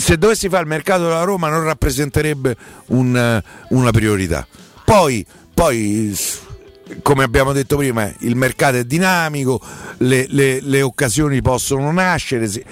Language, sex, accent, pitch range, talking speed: Italian, male, native, 110-150 Hz, 130 wpm